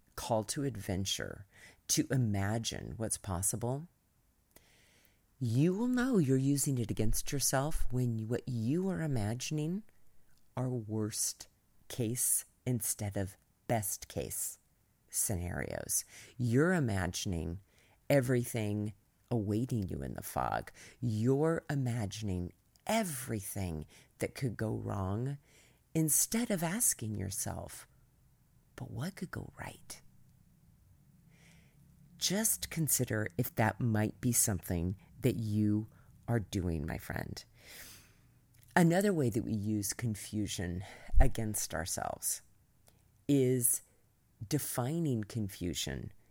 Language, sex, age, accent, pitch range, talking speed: English, female, 40-59, American, 100-140 Hz, 100 wpm